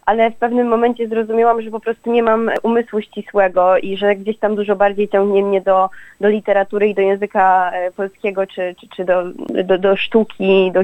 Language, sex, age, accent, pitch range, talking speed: Polish, female, 20-39, native, 190-210 Hz, 195 wpm